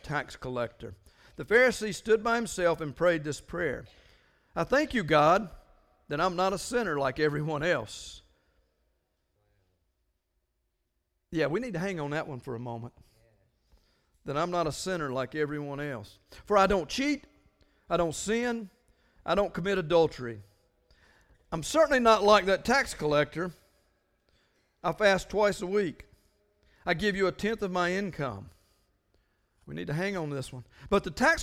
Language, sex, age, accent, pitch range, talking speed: English, male, 50-69, American, 110-185 Hz, 160 wpm